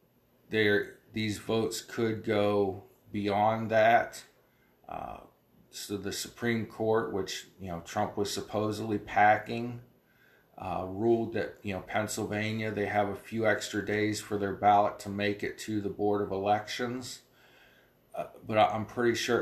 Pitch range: 100-115 Hz